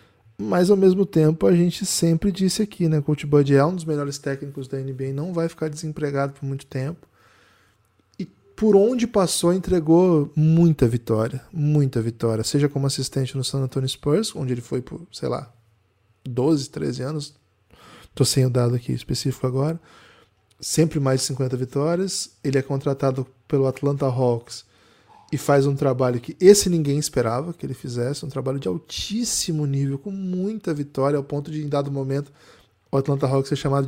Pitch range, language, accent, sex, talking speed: 130-160 Hz, Portuguese, Brazilian, male, 175 wpm